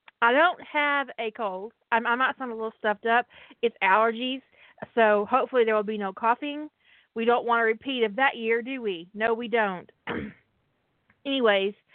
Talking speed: 180 wpm